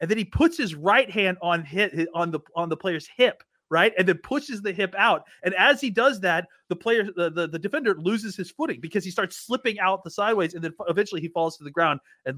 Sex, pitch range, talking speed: male, 150-195 Hz, 250 wpm